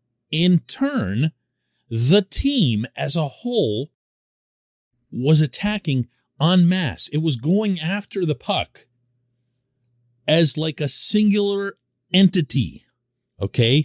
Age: 40-59